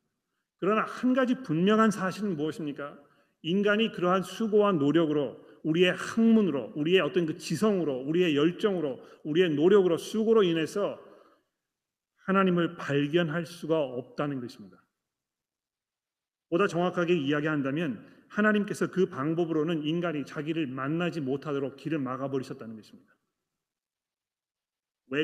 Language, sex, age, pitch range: Korean, male, 40-59, 145-190 Hz